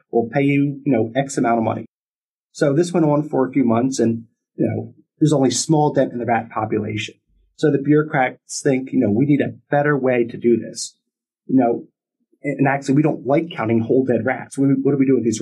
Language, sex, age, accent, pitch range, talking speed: English, male, 30-49, American, 120-150 Hz, 235 wpm